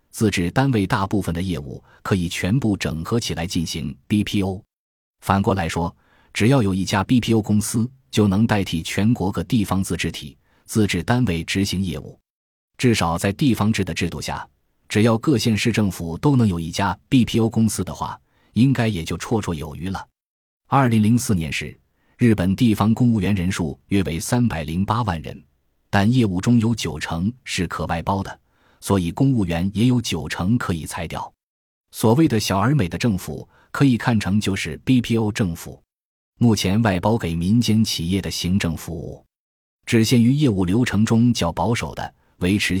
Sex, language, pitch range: male, Chinese, 85-115 Hz